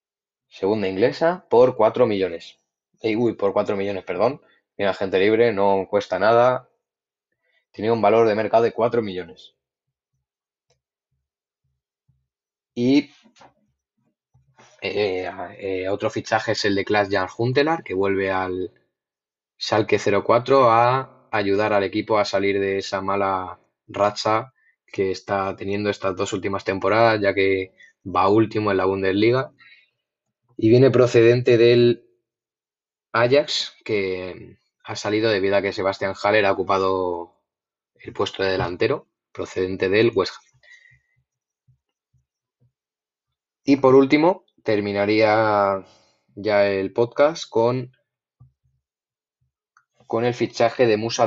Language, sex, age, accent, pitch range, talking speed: Spanish, male, 20-39, Spanish, 95-120 Hz, 115 wpm